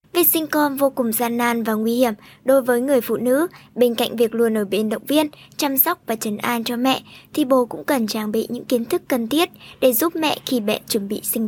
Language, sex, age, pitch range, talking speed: Vietnamese, male, 10-29, 235-300 Hz, 255 wpm